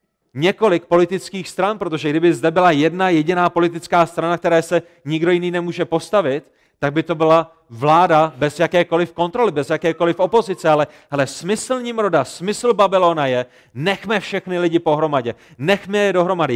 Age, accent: 30-49, native